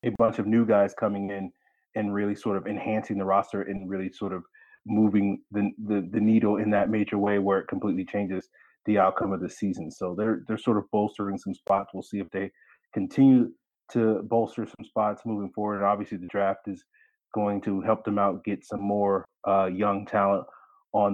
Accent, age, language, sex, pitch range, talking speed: American, 30-49, English, male, 100-115 Hz, 200 wpm